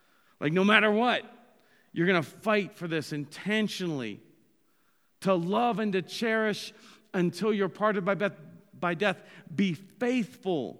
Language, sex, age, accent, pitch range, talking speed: English, male, 40-59, American, 155-215 Hz, 135 wpm